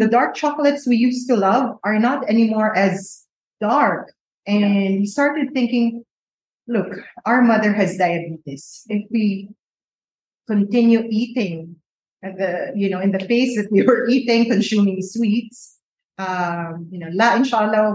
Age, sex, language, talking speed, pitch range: 30-49, female, English, 140 wpm, 200-250 Hz